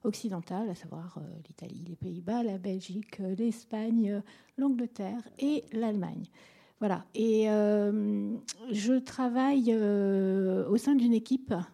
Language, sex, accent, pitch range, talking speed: French, female, French, 195-235 Hz, 130 wpm